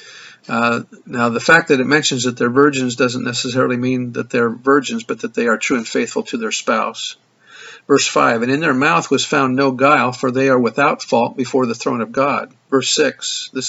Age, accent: 50-69, American